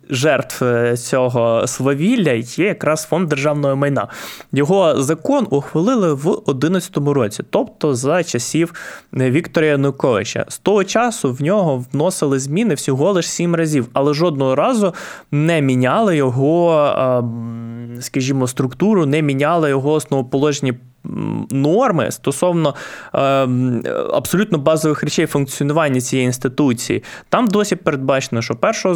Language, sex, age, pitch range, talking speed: Ukrainian, male, 20-39, 130-170 Hz, 120 wpm